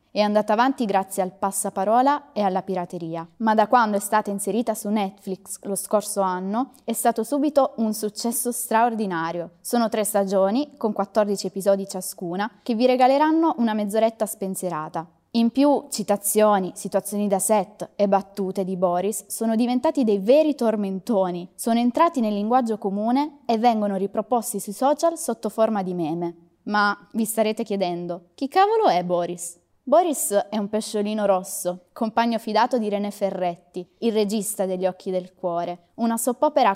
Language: Italian